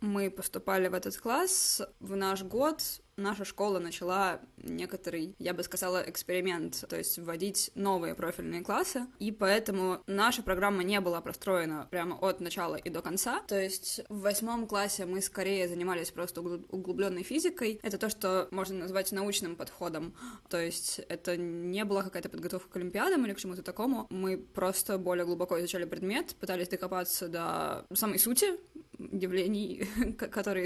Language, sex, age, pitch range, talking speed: Russian, female, 20-39, 180-210 Hz, 155 wpm